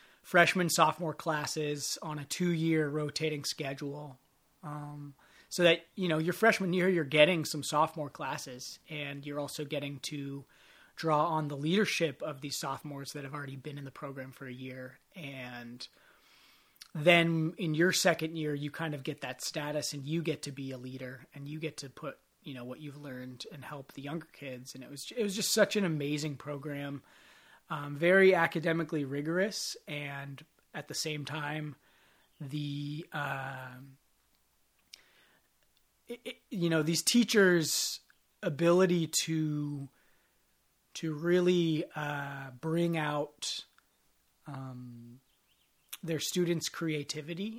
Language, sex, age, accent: English, male, 30-49, American